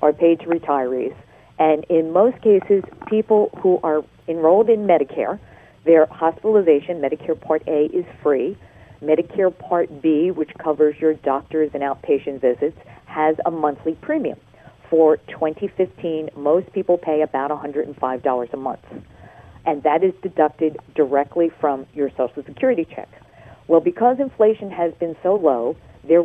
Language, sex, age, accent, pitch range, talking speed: English, female, 50-69, American, 140-180 Hz, 150 wpm